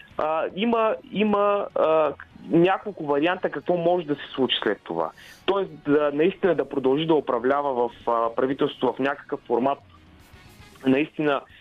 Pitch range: 150-190 Hz